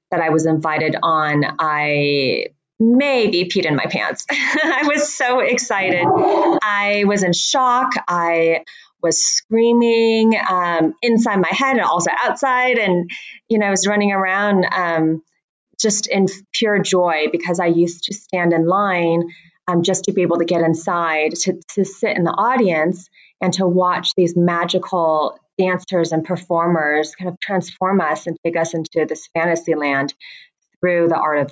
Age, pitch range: 30-49, 160-195 Hz